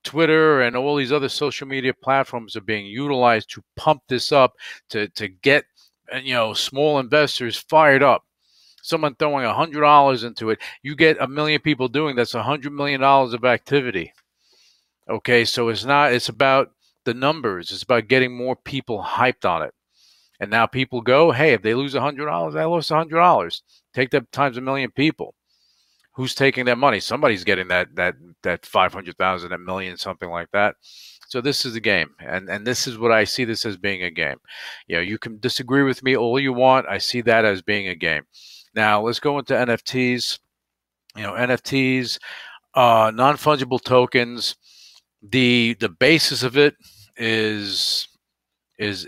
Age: 40-59